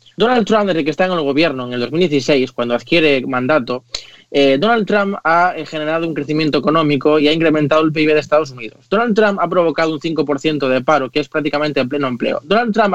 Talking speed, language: 215 wpm, Spanish